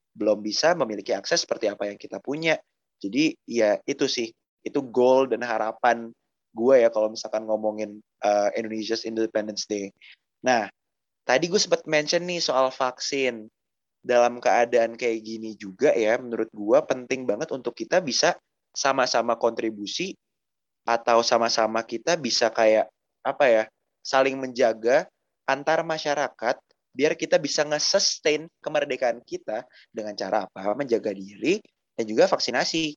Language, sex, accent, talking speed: Indonesian, male, native, 135 wpm